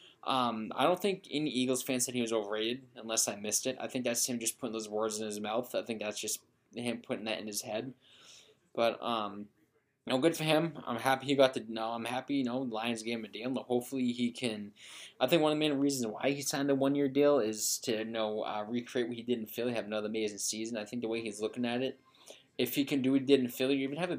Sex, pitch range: male, 115-140 Hz